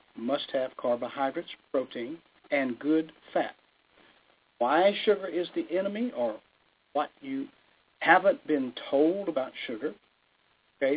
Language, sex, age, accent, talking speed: English, male, 60-79, American, 115 wpm